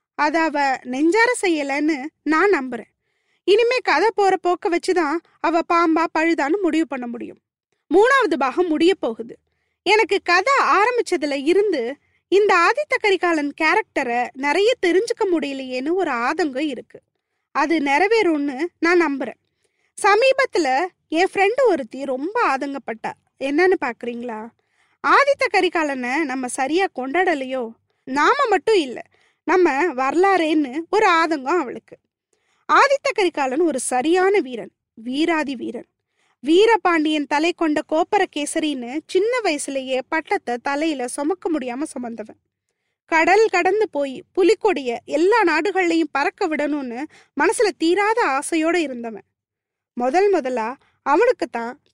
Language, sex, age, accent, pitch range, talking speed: Tamil, female, 20-39, native, 280-385 Hz, 105 wpm